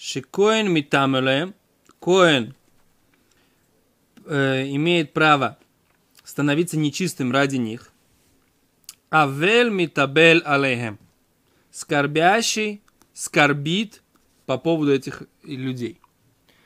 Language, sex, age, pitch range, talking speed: Russian, male, 30-49, 135-175 Hz, 65 wpm